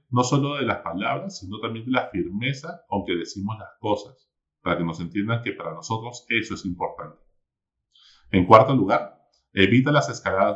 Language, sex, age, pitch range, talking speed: Spanish, male, 40-59, 100-135 Hz, 175 wpm